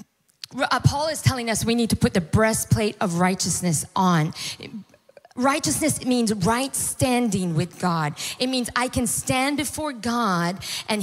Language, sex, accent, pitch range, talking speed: English, female, American, 170-245 Hz, 145 wpm